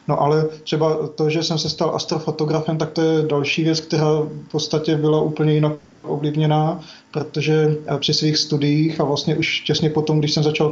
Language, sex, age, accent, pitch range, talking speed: Czech, male, 20-39, native, 150-155 Hz, 185 wpm